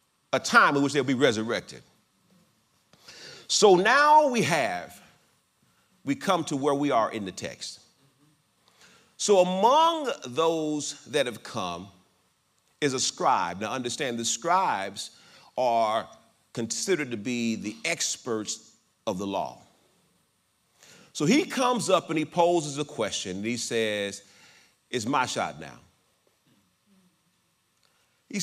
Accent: American